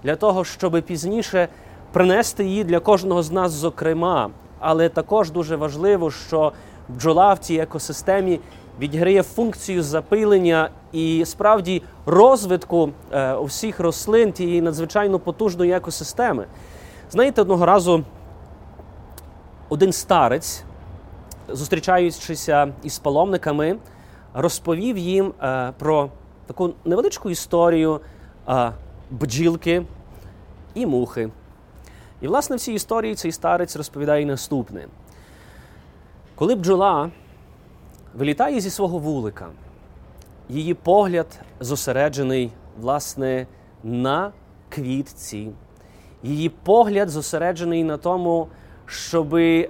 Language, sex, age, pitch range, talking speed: Ukrainian, male, 30-49, 130-185 Hz, 95 wpm